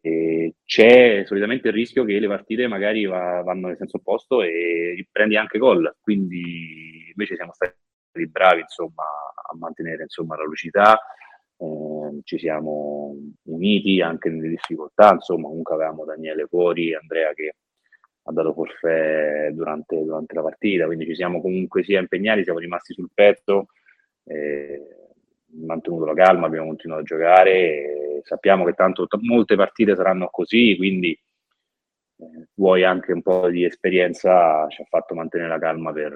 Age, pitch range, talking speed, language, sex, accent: 30-49, 80-95 Hz, 150 wpm, Italian, male, native